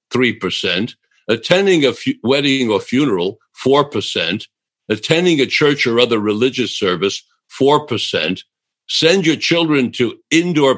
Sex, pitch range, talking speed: male, 120-155 Hz, 130 wpm